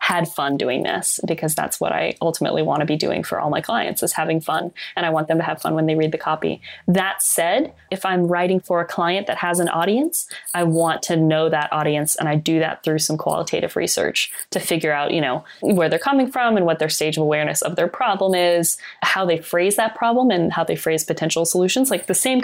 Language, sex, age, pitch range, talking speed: English, female, 20-39, 160-195 Hz, 245 wpm